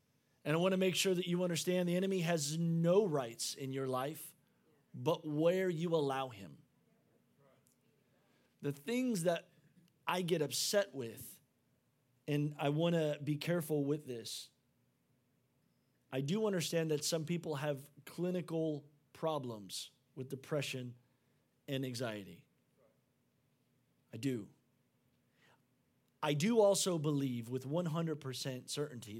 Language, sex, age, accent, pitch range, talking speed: English, male, 30-49, American, 135-175 Hz, 120 wpm